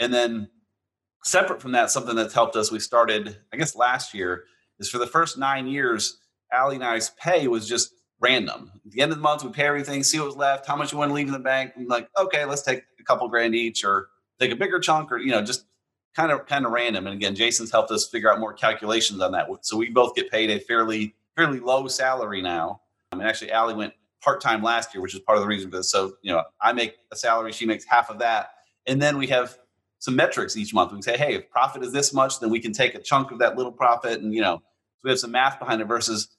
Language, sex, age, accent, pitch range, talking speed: English, male, 30-49, American, 110-135 Hz, 265 wpm